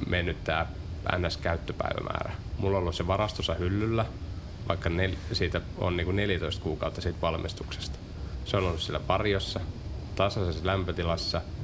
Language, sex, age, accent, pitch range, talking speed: Finnish, male, 30-49, native, 85-95 Hz, 130 wpm